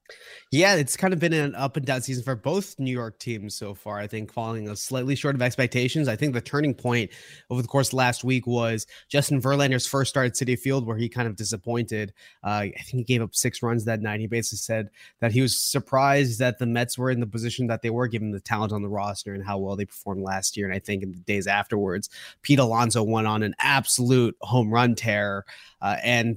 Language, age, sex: English, 20-39, male